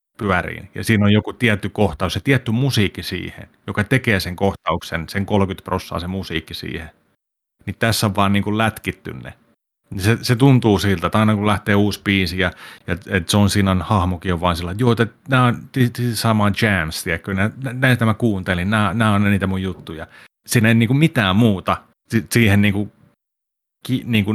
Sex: male